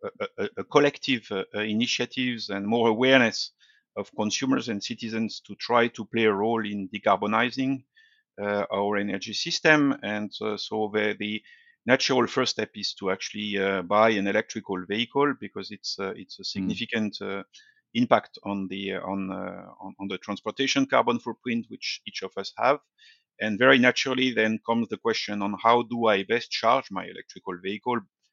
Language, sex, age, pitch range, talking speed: English, male, 50-69, 100-125 Hz, 170 wpm